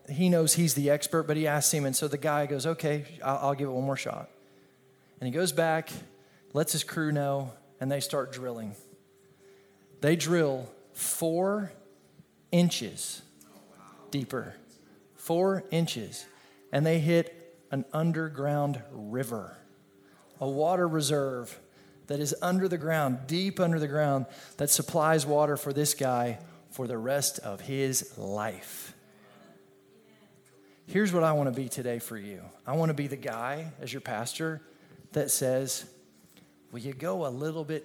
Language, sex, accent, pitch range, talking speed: English, male, American, 130-165 Hz, 155 wpm